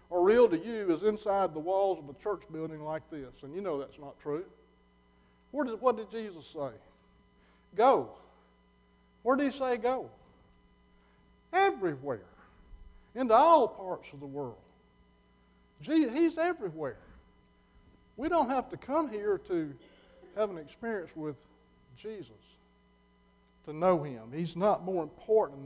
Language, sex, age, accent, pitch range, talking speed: English, male, 60-79, American, 150-210 Hz, 135 wpm